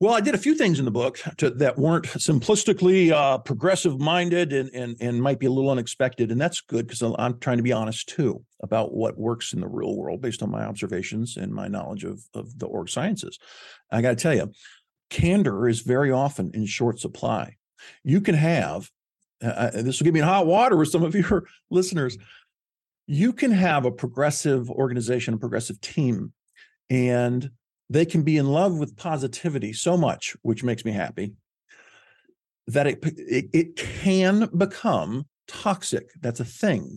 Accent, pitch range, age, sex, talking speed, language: American, 120-175 Hz, 50-69, male, 185 wpm, English